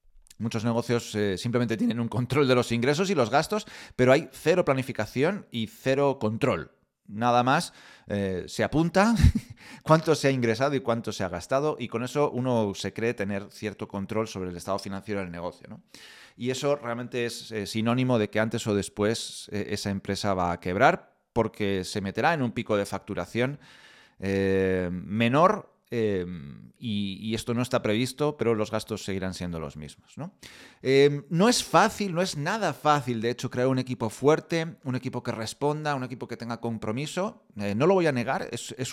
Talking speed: 190 wpm